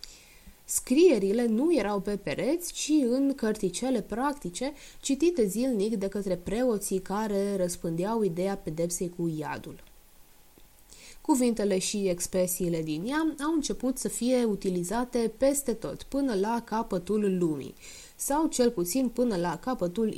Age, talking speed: 20-39, 125 wpm